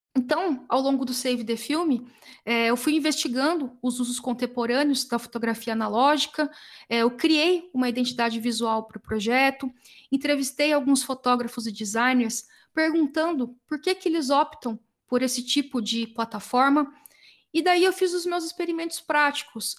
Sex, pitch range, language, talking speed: female, 240-295 Hz, Portuguese, 150 wpm